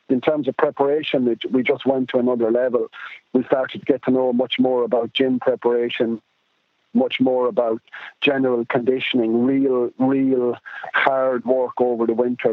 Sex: male